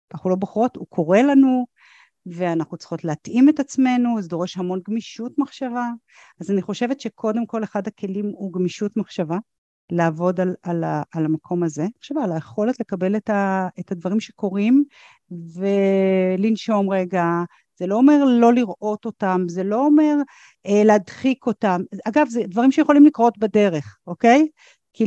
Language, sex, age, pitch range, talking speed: Hebrew, female, 40-59, 170-225 Hz, 150 wpm